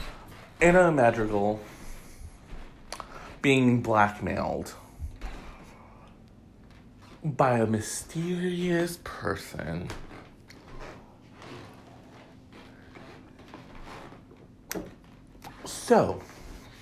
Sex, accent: male, American